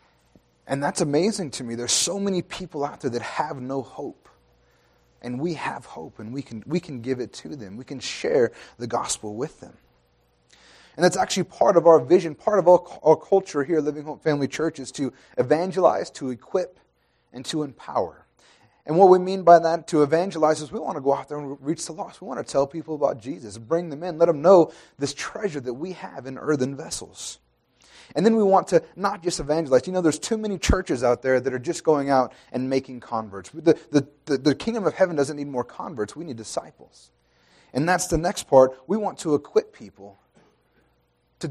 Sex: male